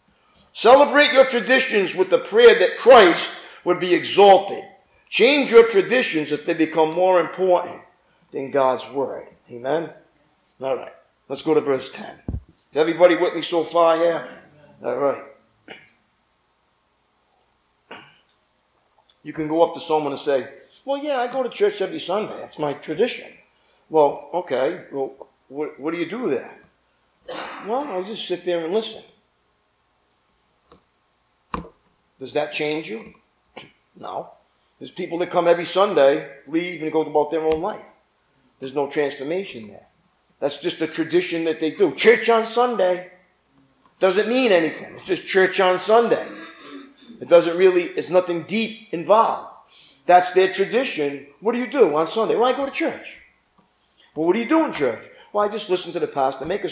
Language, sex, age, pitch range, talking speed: English, male, 50-69, 155-225 Hz, 160 wpm